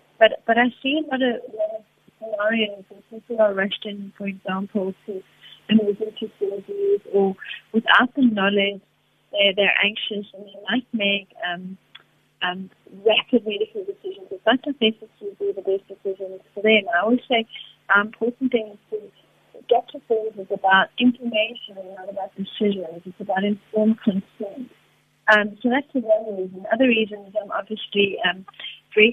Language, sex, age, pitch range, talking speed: English, female, 30-49, 190-230 Hz, 165 wpm